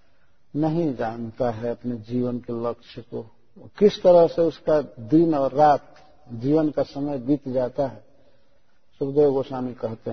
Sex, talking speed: male, 140 wpm